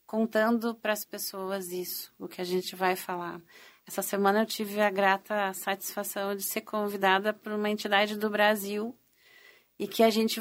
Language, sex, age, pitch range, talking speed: Portuguese, female, 40-59, 190-205 Hz, 175 wpm